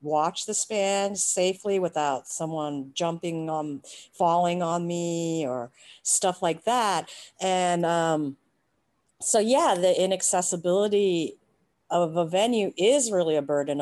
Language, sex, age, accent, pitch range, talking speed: English, female, 50-69, American, 165-225 Hz, 120 wpm